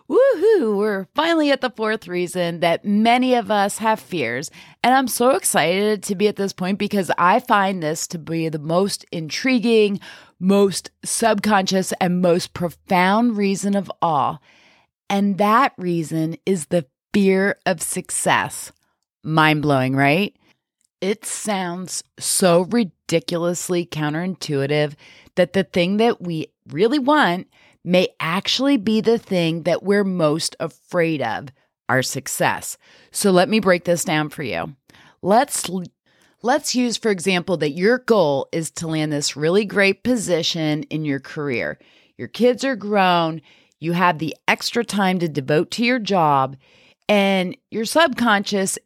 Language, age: English, 30-49